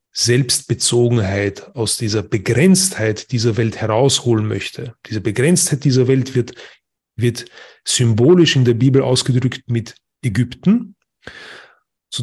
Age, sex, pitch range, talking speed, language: 30-49, male, 115-140 Hz, 110 wpm, German